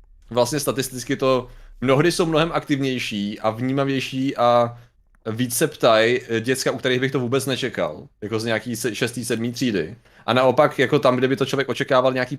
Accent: native